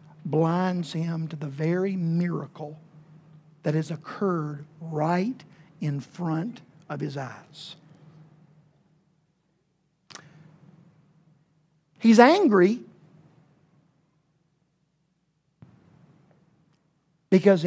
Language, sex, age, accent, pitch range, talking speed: English, male, 60-79, American, 160-210 Hz, 60 wpm